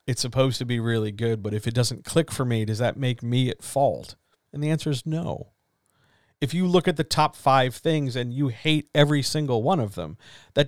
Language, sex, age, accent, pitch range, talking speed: English, male, 50-69, American, 115-145 Hz, 230 wpm